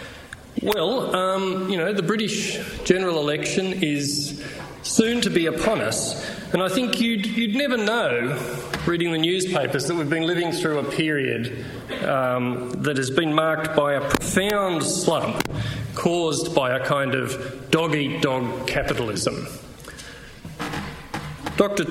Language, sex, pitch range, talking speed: English, male, 135-180 Hz, 130 wpm